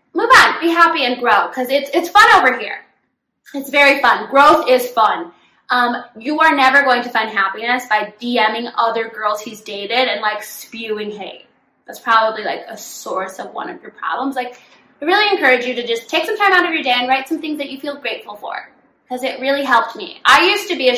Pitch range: 225-290 Hz